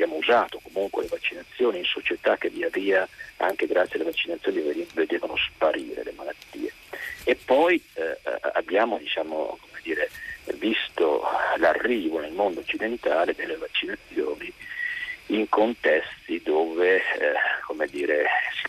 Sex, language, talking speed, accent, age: male, Italian, 125 wpm, native, 50-69